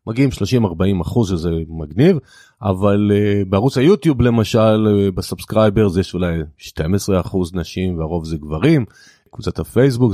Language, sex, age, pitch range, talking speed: Hebrew, male, 30-49, 95-130 Hz, 130 wpm